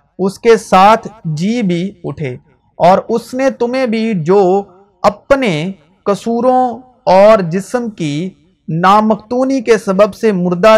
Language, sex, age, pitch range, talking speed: Urdu, male, 50-69, 170-220 Hz, 120 wpm